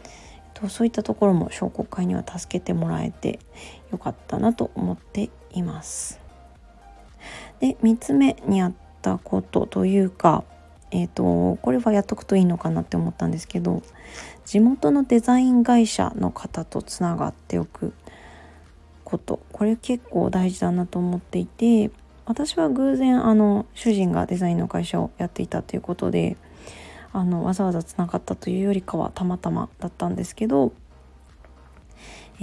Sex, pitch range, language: female, 165-215 Hz, Japanese